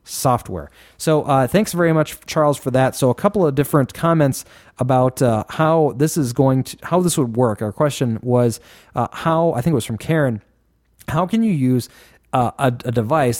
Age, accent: 30-49, American